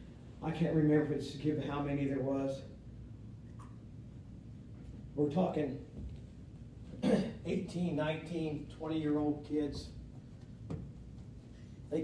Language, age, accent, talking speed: English, 50-69, American, 80 wpm